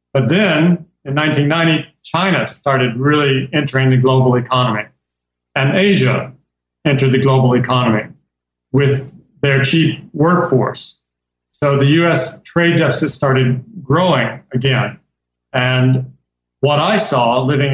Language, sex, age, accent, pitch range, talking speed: English, male, 40-59, American, 125-145 Hz, 115 wpm